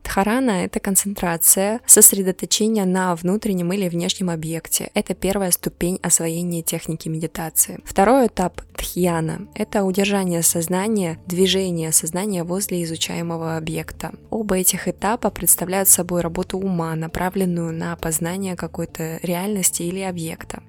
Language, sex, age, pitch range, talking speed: Russian, female, 20-39, 170-195 Hz, 115 wpm